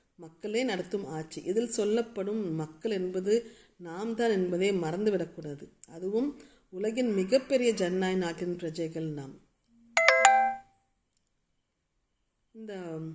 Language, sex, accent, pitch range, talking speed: Tamil, female, native, 170-210 Hz, 85 wpm